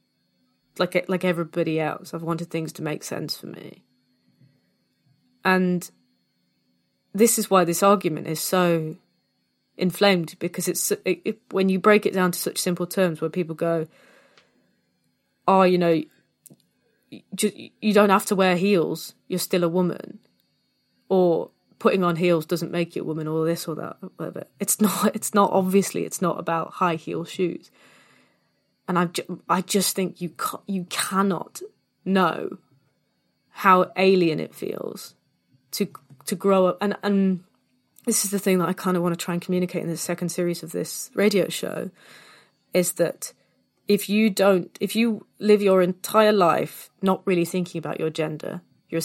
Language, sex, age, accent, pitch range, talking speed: English, female, 20-39, British, 165-195 Hz, 165 wpm